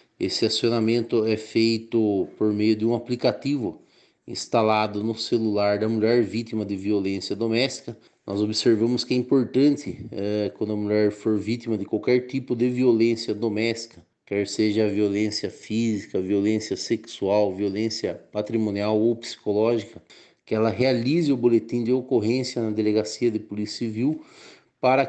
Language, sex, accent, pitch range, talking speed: Portuguese, male, Brazilian, 110-130 Hz, 140 wpm